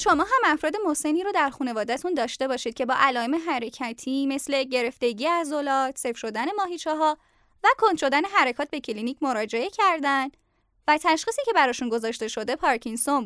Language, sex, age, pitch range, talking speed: English, female, 10-29, 260-360 Hz, 160 wpm